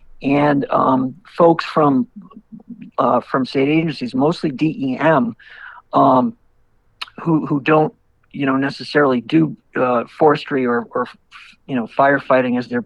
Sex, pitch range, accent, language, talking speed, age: male, 130-175 Hz, American, English, 125 wpm, 50-69